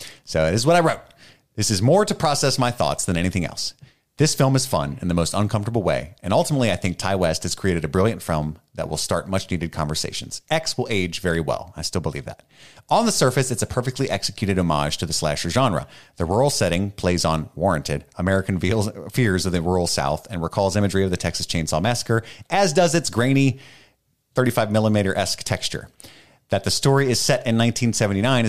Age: 30-49